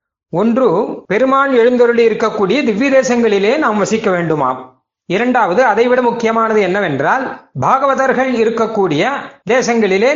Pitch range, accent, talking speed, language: 180-225 Hz, native, 100 wpm, Tamil